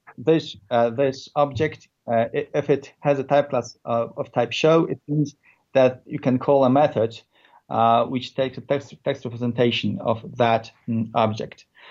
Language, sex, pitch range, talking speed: English, male, 120-150 Hz, 170 wpm